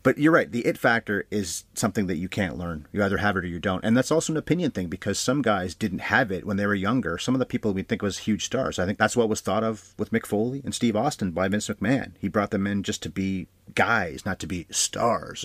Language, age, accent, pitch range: English, 30-49, American, 90-110 Hz